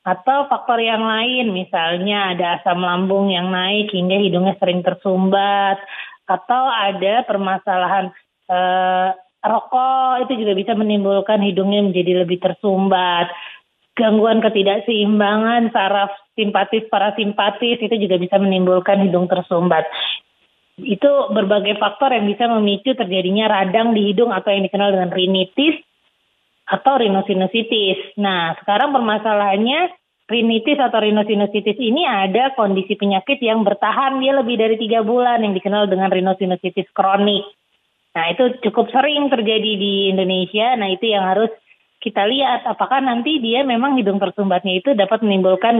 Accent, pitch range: native, 190-230 Hz